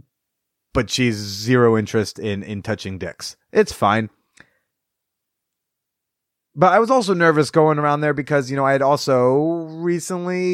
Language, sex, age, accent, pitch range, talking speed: English, male, 30-49, American, 120-155 Hz, 140 wpm